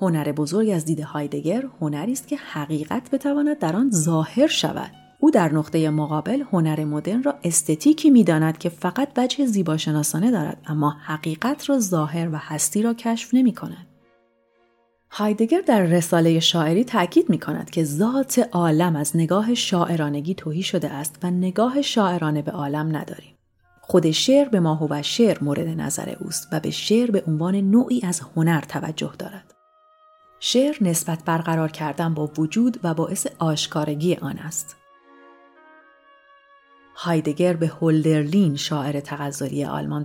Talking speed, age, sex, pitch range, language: 145 wpm, 30-49, female, 150-200 Hz, Persian